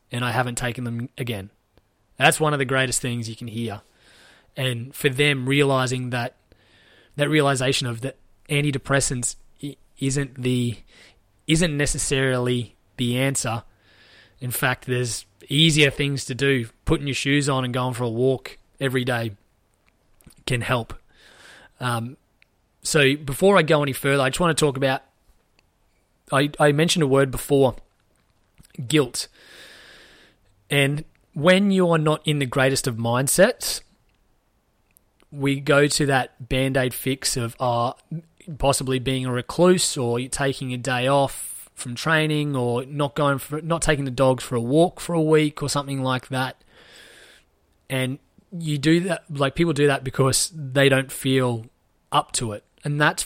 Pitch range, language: 125-145 Hz, English